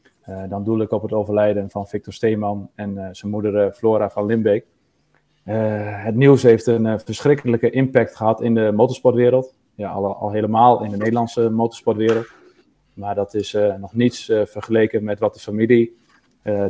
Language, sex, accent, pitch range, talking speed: English, male, Dutch, 105-115 Hz, 180 wpm